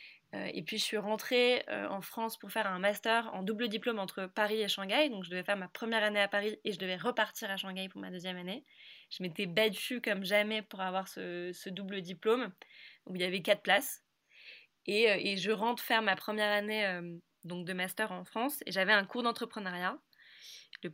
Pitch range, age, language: 190-225 Hz, 20-39, French